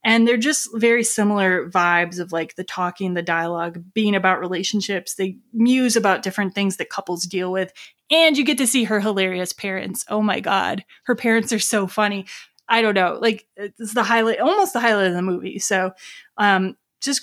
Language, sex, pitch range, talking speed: English, female, 190-230 Hz, 195 wpm